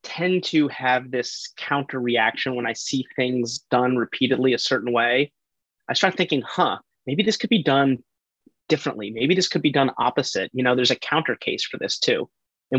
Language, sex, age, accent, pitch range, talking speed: English, male, 30-49, American, 125-155 Hz, 190 wpm